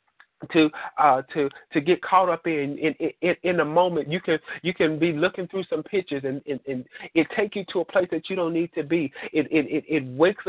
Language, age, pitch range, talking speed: English, 40-59, 150-175 Hz, 240 wpm